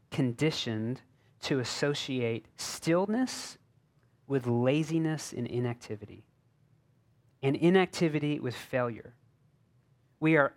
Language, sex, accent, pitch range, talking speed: English, male, American, 125-160 Hz, 80 wpm